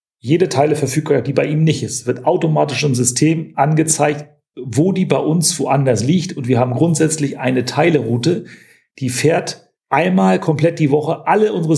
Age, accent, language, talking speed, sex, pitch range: 40-59, German, German, 170 wpm, male, 130-160 Hz